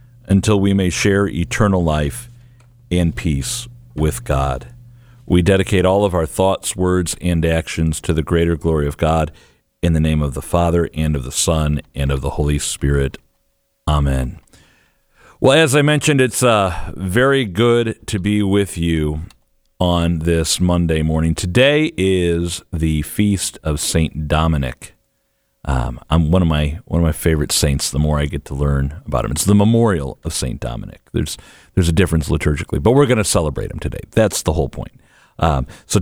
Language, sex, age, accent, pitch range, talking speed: English, male, 50-69, American, 80-100 Hz, 175 wpm